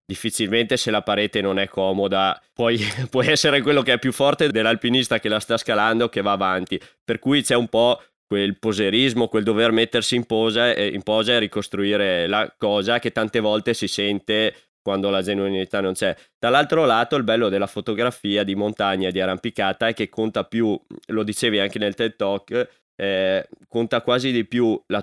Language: Italian